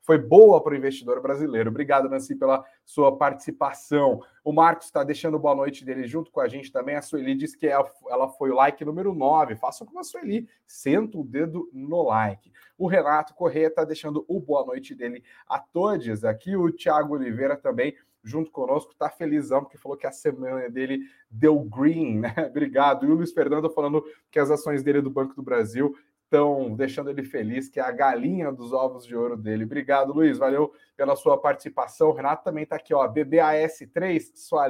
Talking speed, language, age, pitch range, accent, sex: 195 wpm, Portuguese, 30-49, 135-165 Hz, Brazilian, male